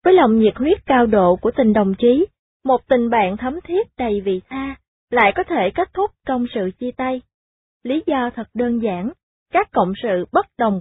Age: 20-39